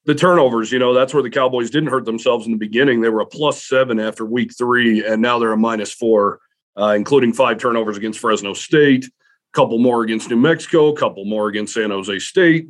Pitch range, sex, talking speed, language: 115-135 Hz, male, 225 wpm, English